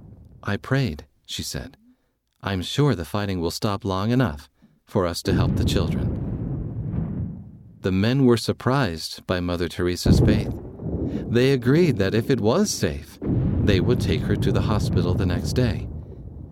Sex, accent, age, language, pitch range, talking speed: male, American, 50-69, English, 85-120 Hz, 155 wpm